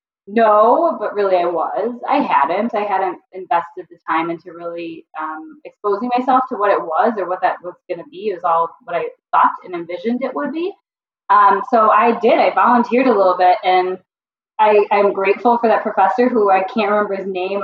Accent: American